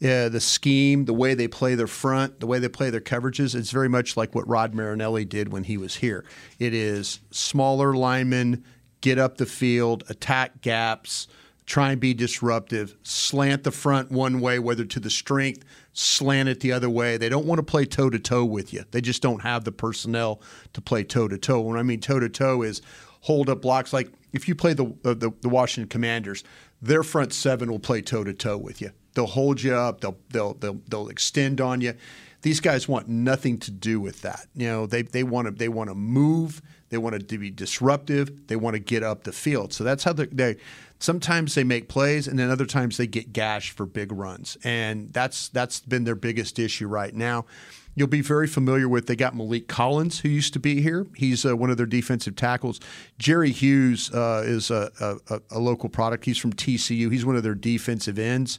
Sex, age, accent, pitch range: male, 40-59, American, 115-135 Hz